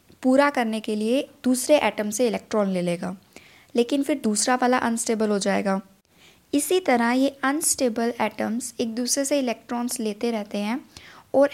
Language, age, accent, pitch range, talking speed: Hindi, 20-39, native, 215-270 Hz, 155 wpm